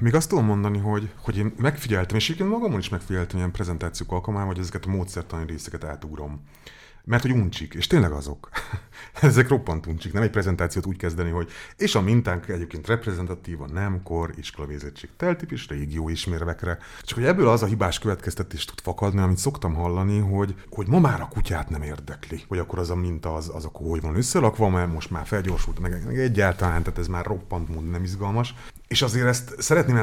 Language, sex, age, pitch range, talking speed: Hungarian, male, 30-49, 85-105 Hz, 195 wpm